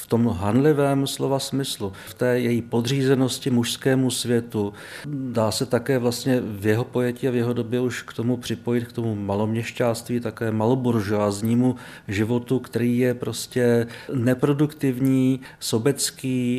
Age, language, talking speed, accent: 50-69, Czech, 135 wpm, native